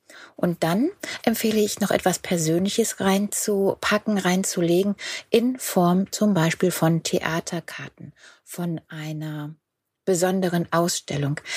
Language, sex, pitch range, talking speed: German, female, 160-195 Hz, 100 wpm